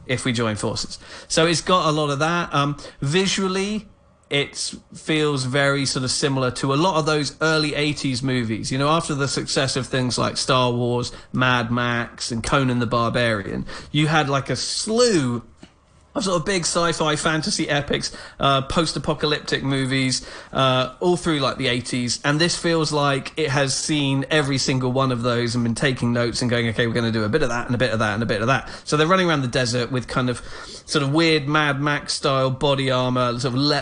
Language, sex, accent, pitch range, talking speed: English, male, British, 130-165 Hz, 210 wpm